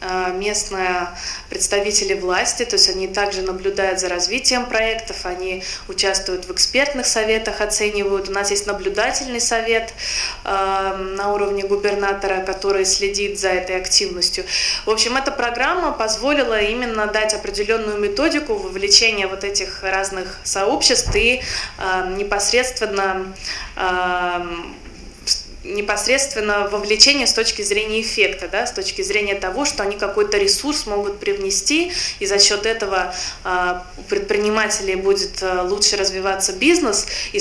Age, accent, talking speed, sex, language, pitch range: 20-39, native, 120 wpm, female, Russian, 190-225 Hz